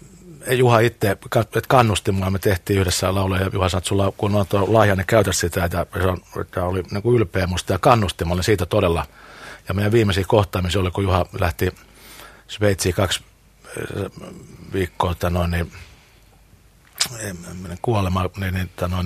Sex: male